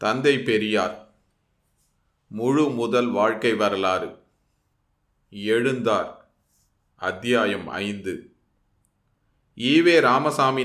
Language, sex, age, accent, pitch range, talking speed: Tamil, male, 30-49, native, 115-135 Hz, 55 wpm